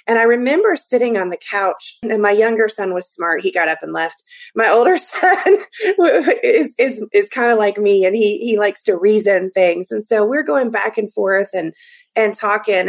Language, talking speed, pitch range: English, 210 wpm, 200-285 Hz